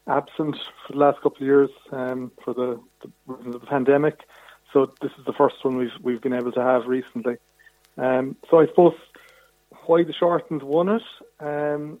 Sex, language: male, English